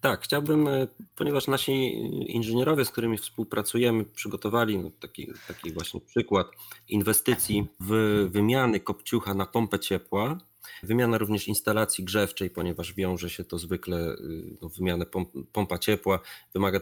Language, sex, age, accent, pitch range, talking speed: Polish, male, 30-49, native, 90-115 Hz, 120 wpm